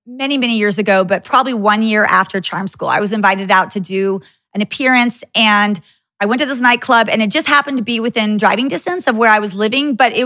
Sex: female